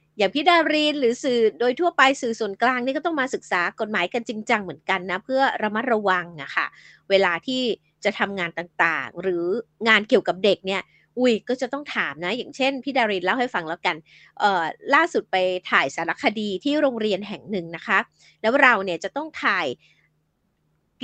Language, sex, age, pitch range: Thai, female, 20-39, 185-255 Hz